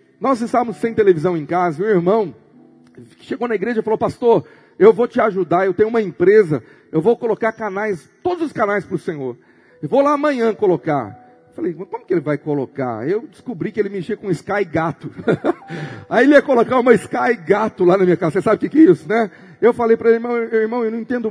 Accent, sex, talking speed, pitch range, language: Brazilian, male, 225 wpm, 180-245 Hz, Portuguese